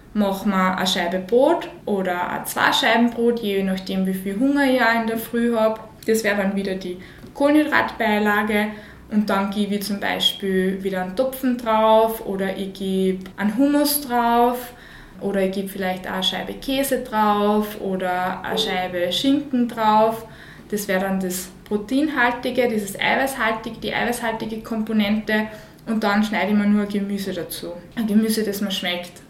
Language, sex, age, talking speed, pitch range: German, female, 20-39, 160 wpm, 190-225 Hz